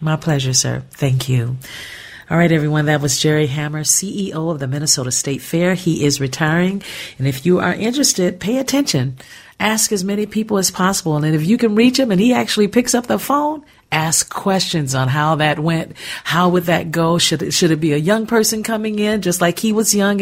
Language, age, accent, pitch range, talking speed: English, 50-69, American, 150-210 Hz, 210 wpm